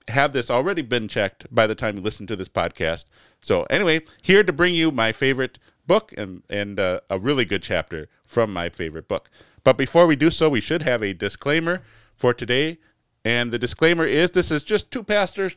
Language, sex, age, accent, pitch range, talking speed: English, male, 40-59, American, 105-135 Hz, 210 wpm